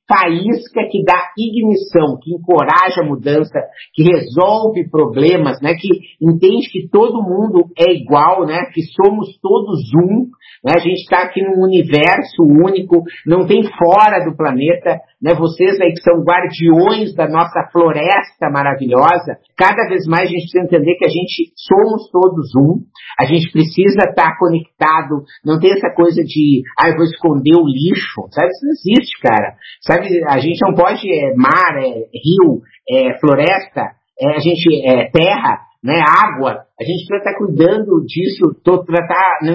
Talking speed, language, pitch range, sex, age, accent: 165 wpm, Portuguese, 160-195 Hz, male, 50-69, Brazilian